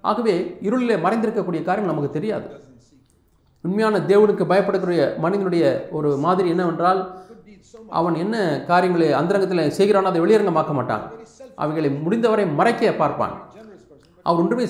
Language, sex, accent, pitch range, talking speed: Tamil, male, native, 175-205 Hz, 115 wpm